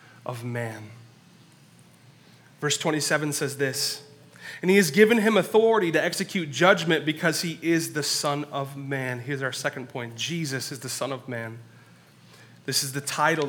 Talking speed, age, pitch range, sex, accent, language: 160 wpm, 30-49, 140-170 Hz, male, American, English